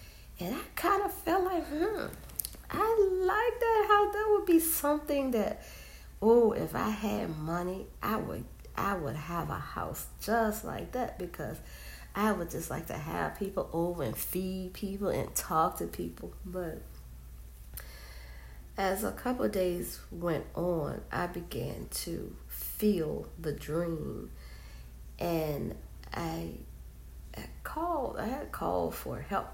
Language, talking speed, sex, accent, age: English, 140 wpm, female, American, 50-69